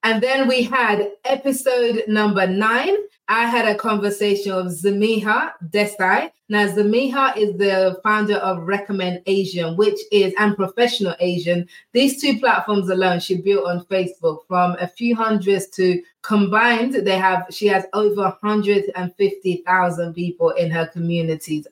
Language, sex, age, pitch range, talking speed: English, female, 20-39, 175-210 Hz, 150 wpm